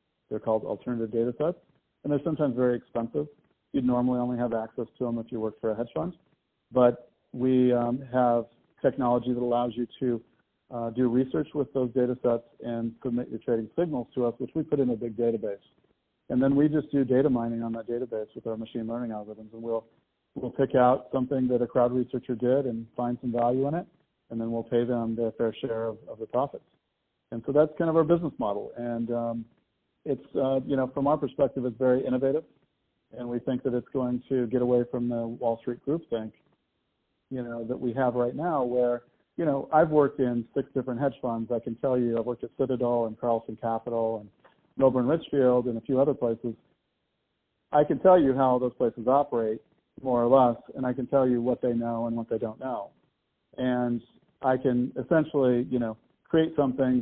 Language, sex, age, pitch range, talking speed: English, male, 50-69, 115-130 Hz, 210 wpm